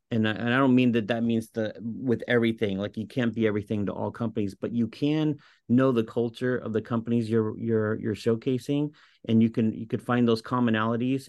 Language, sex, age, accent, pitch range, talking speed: English, male, 40-59, American, 105-120 Hz, 220 wpm